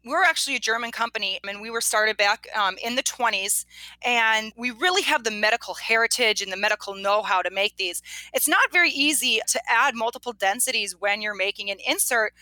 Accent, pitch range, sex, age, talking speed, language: American, 205-265 Hz, female, 30-49, 210 wpm, English